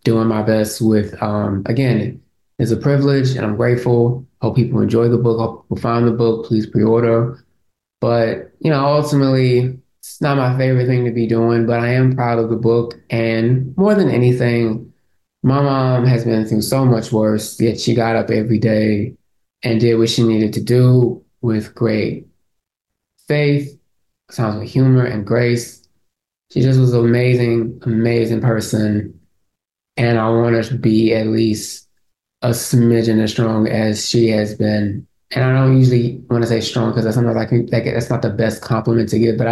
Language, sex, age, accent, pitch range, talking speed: English, male, 20-39, American, 110-120 Hz, 180 wpm